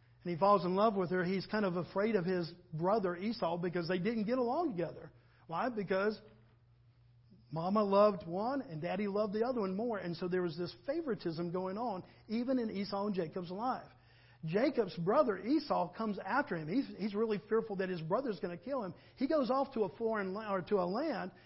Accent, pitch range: American, 125-210 Hz